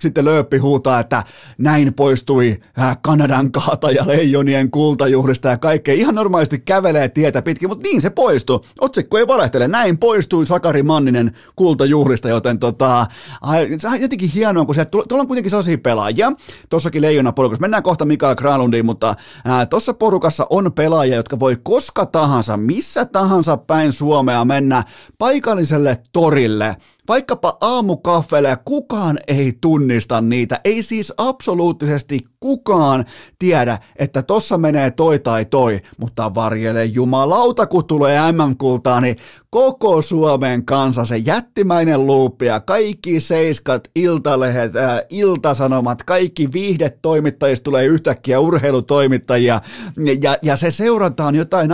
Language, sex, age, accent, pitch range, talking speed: Finnish, male, 30-49, native, 125-170 Hz, 130 wpm